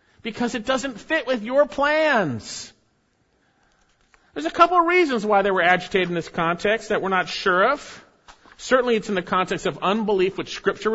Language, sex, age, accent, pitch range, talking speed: English, male, 50-69, American, 175-260 Hz, 180 wpm